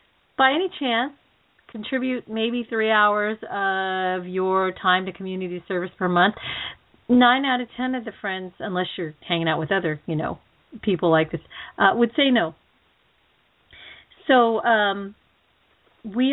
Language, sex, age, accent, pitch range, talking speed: English, female, 40-59, American, 180-240 Hz, 145 wpm